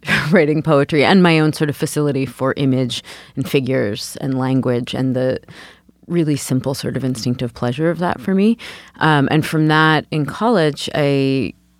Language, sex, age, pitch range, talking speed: English, female, 30-49, 125-155 Hz, 170 wpm